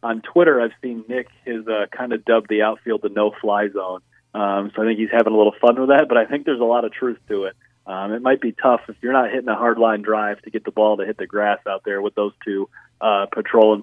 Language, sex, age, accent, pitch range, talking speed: English, male, 30-49, American, 100-120 Hz, 280 wpm